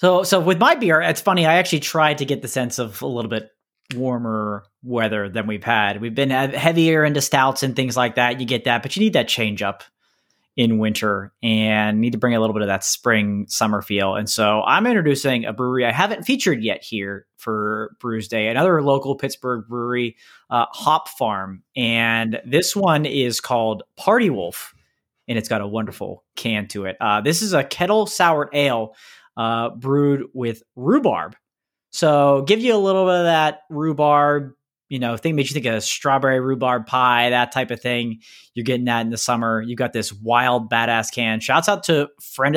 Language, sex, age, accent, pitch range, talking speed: English, male, 20-39, American, 115-155 Hz, 200 wpm